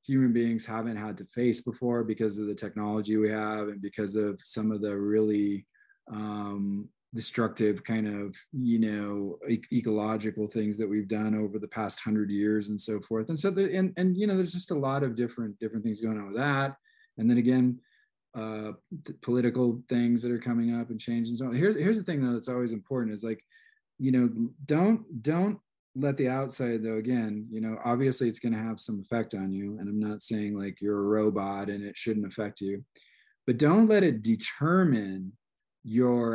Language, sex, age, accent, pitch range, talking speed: English, male, 20-39, American, 105-125 Hz, 205 wpm